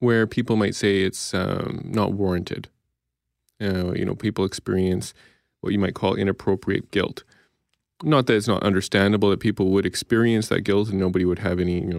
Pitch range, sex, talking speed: 95-115 Hz, male, 185 wpm